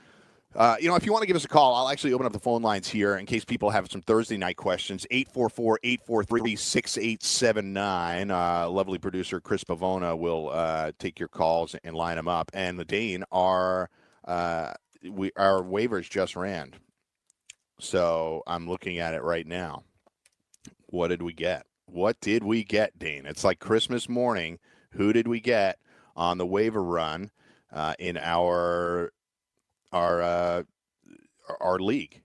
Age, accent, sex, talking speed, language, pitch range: 40-59, American, male, 165 wpm, English, 85-110 Hz